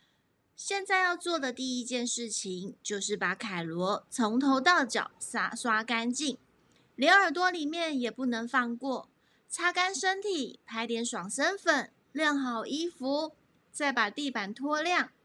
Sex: female